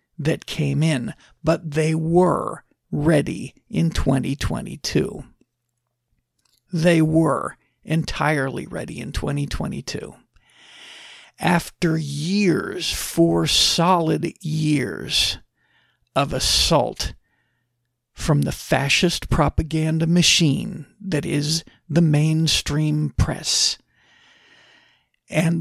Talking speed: 75 wpm